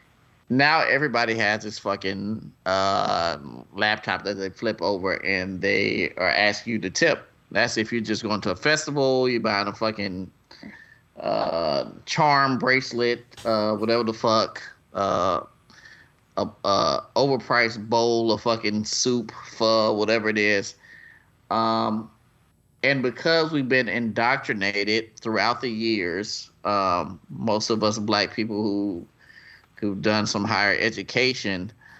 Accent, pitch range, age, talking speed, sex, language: American, 100-115 Hz, 20-39, 130 wpm, male, English